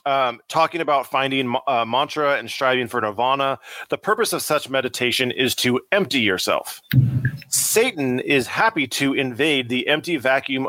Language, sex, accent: English, male, American